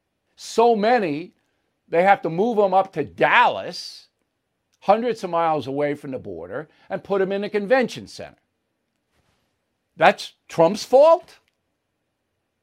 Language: English